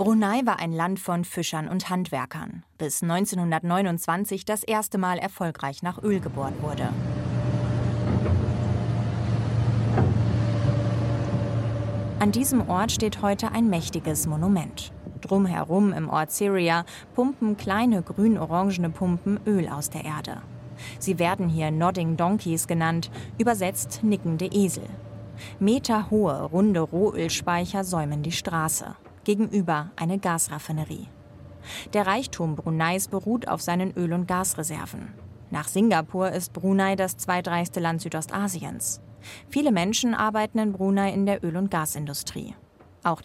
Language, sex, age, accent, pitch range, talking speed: German, female, 30-49, German, 160-200 Hz, 115 wpm